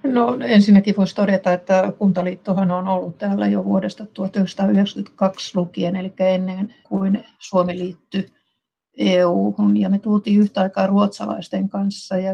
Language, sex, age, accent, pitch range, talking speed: Finnish, female, 60-79, native, 180-205 Hz, 130 wpm